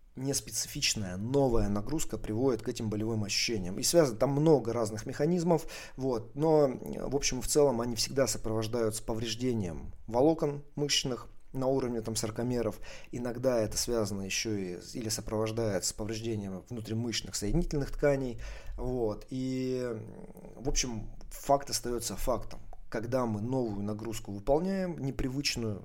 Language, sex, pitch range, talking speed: Russian, male, 110-130 Hz, 130 wpm